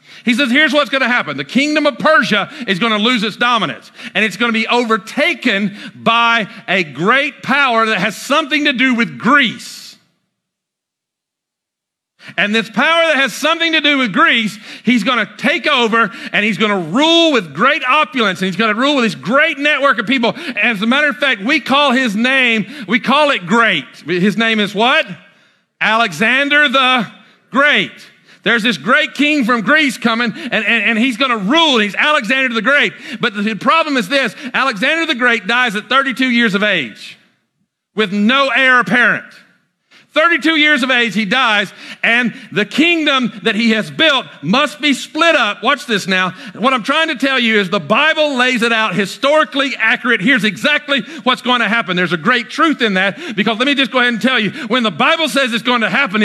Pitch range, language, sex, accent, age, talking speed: 215-275 Hz, English, male, American, 50-69, 200 wpm